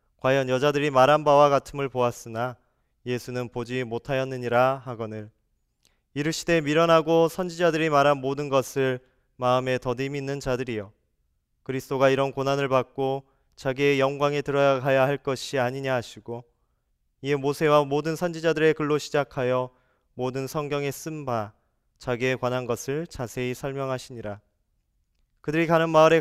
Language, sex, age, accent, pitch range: Korean, male, 20-39, native, 125-145 Hz